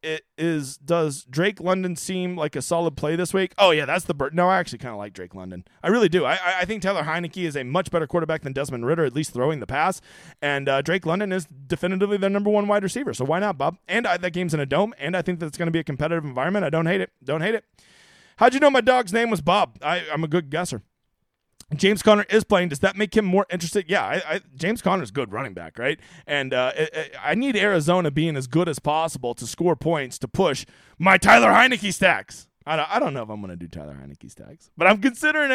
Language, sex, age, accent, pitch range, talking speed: English, male, 30-49, American, 140-200 Hz, 260 wpm